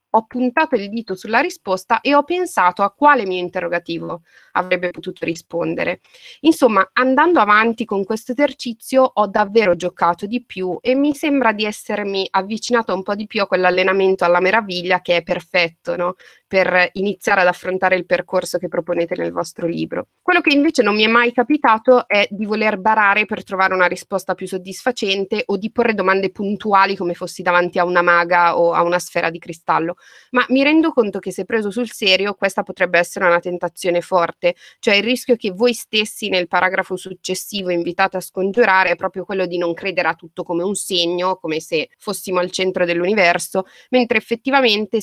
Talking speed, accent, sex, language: 180 wpm, native, female, Italian